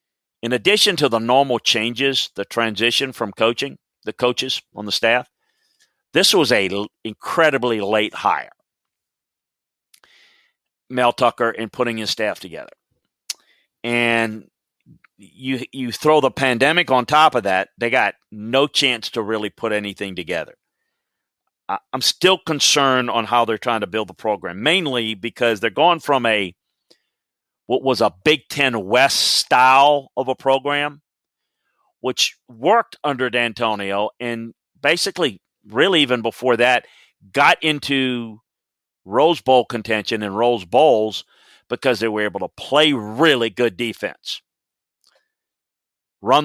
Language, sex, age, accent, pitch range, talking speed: English, male, 40-59, American, 110-135 Hz, 135 wpm